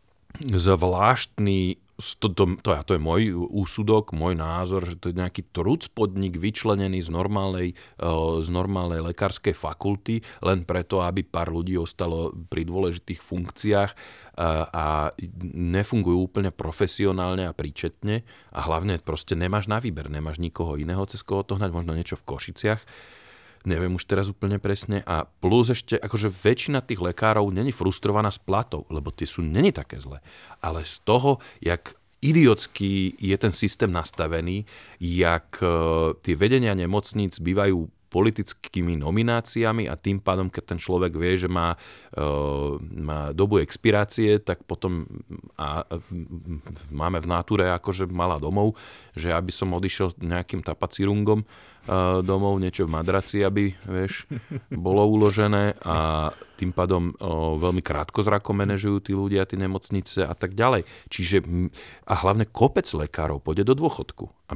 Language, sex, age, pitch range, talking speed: Slovak, male, 40-59, 85-100 Hz, 140 wpm